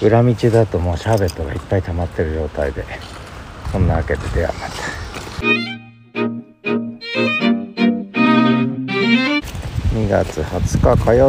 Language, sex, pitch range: Japanese, male, 90-125 Hz